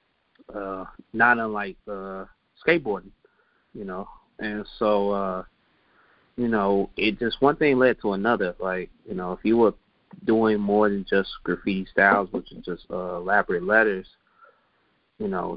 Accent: American